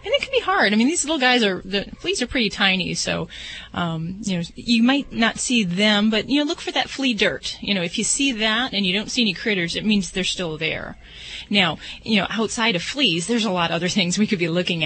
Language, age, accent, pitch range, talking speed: English, 30-49, American, 170-205 Hz, 265 wpm